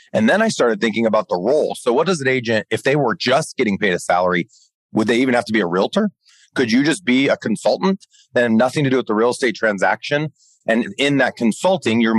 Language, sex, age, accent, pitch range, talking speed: English, male, 30-49, American, 95-120 Hz, 240 wpm